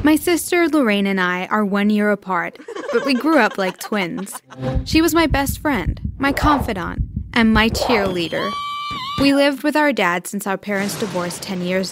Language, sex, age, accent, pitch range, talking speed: English, female, 10-29, American, 195-270 Hz, 180 wpm